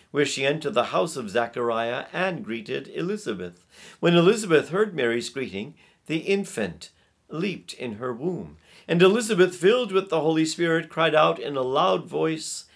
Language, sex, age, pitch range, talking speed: English, male, 50-69, 120-165 Hz, 160 wpm